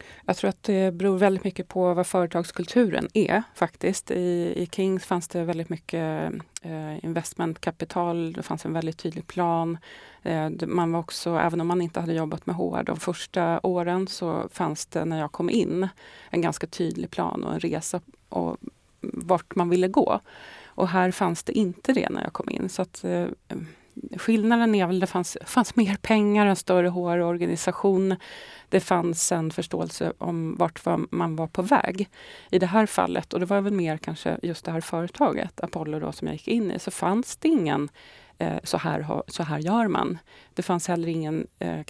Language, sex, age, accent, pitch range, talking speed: Swedish, female, 30-49, native, 165-190 Hz, 185 wpm